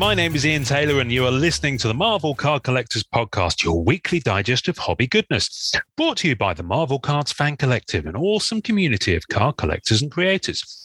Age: 30-49